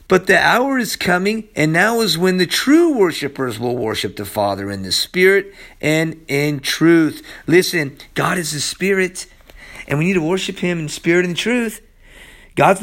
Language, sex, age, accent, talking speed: English, male, 40-59, American, 180 wpm